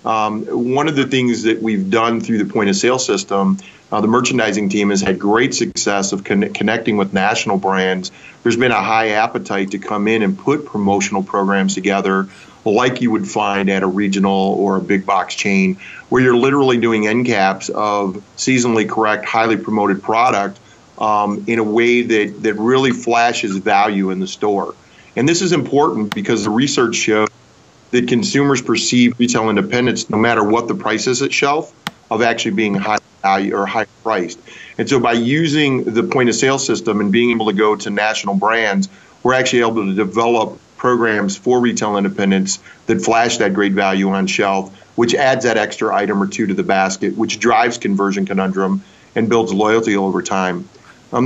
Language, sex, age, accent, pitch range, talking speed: English, male, 40-59, American, 100-120 Hz, 185 wpm